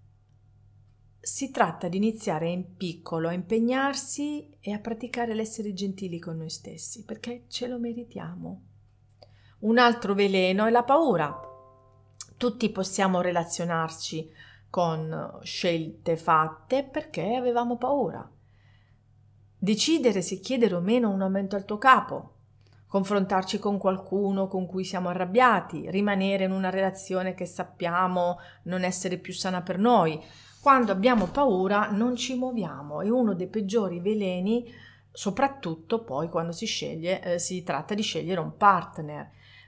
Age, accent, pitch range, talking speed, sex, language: 40-59, native, 160-225 Hz, 130 wpm, female, Italian